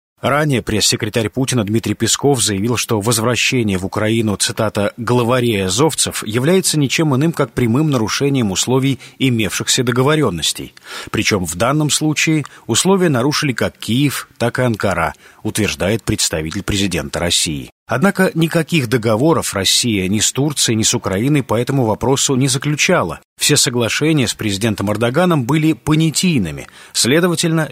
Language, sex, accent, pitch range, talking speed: Russian, male, native, 110-155 Hz, 130 wpm